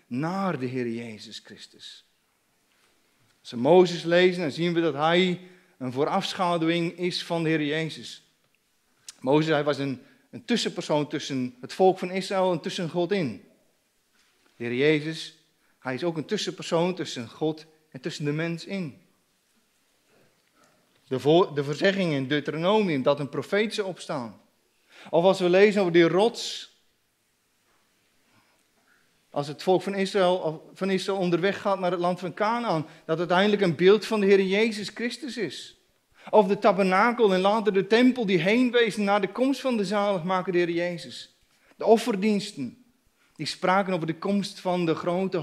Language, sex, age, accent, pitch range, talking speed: Dutch, male, 40-59, Dutch, 160-200 Hz, 160 wpm